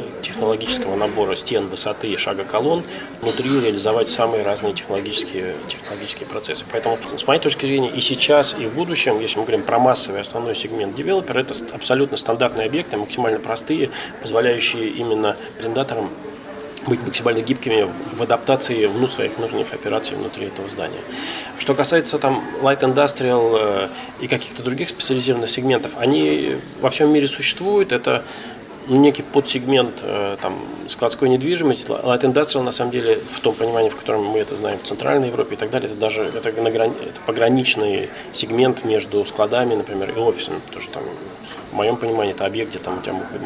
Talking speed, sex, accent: 155 wpm, male, native